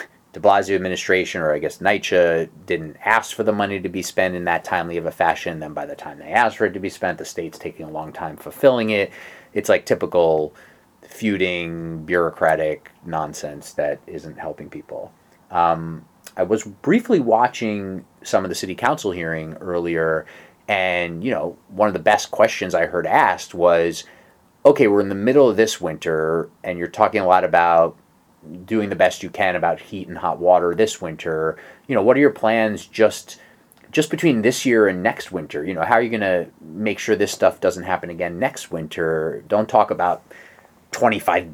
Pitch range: 85-105 Hz